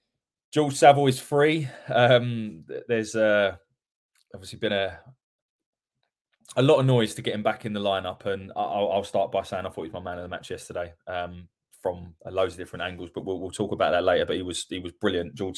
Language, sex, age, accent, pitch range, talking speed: English, male, 20-39, British, 105-140 Hz, 225 wpm